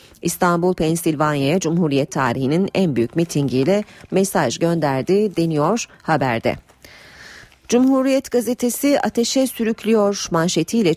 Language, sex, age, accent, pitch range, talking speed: Turkish, female, 40-59, native, 150-200 Hz, 90 wpm